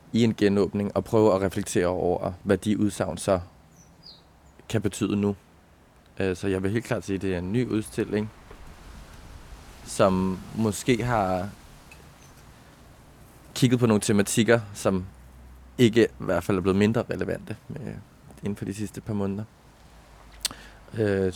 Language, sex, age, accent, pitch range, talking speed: Danish, male, 20-39, native, 90-105 Hz, 140 wpm